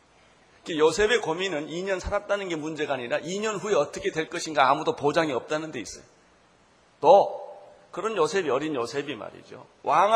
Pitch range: 155-220 Hz